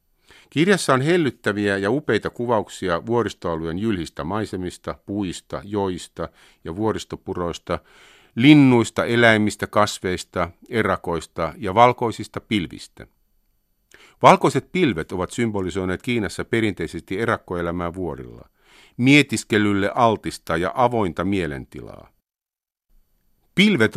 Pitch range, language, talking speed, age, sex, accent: 90-125 Hz, Finnish, 85 wpm, 50-69, male, native